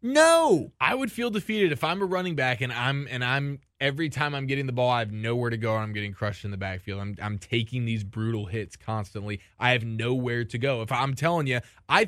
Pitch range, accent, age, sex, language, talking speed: 105-140 Hz, American, 20-39, male, English, 245 wpm